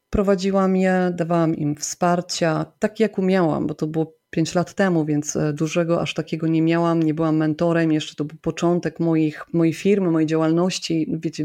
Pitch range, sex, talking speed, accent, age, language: 160-190 Hz, female, 175 wpm, native, 30-49, Polish